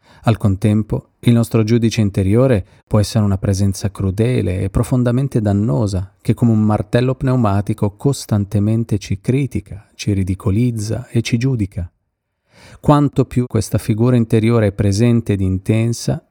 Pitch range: 100-120 Hz